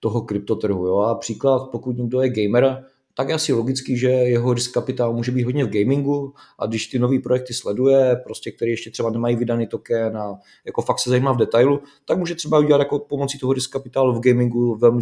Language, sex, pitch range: Czech, male, 110-125 Hz